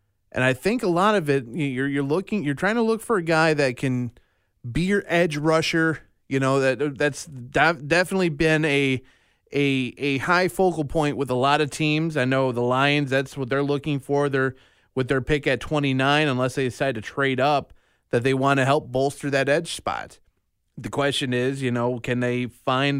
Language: English